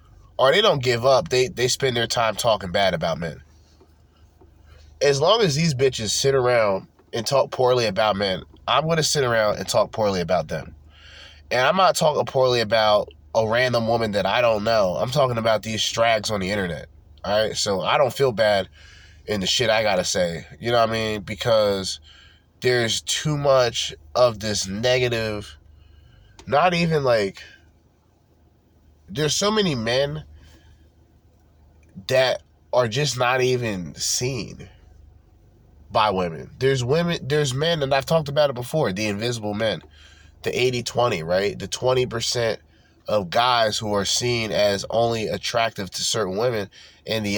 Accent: American